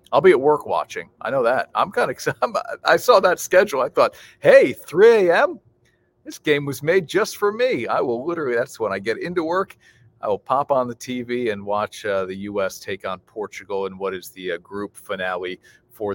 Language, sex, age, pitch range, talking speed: English, male, 40-59, 105-140 Hz, 220 wpm